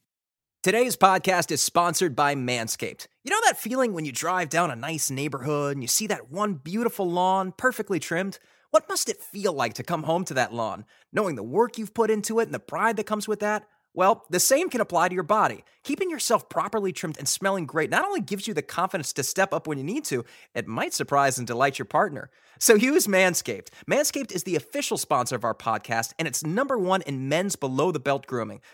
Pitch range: 150-225 Hz